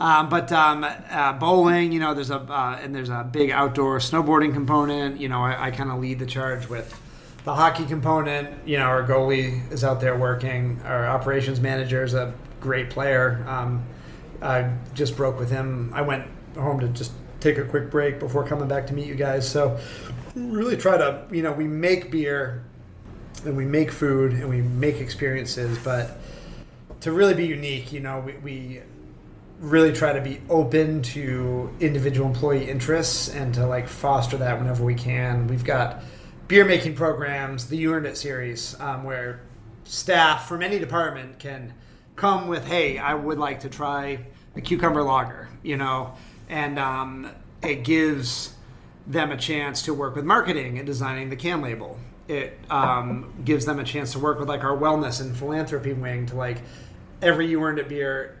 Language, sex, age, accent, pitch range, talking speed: English, male, 30-49, American, 130-150 Hz, 185 wpm